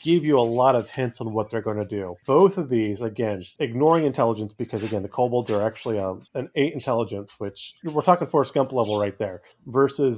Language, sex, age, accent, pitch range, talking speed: English, male, 30-49, American, 110-140 Hz, 225 wpm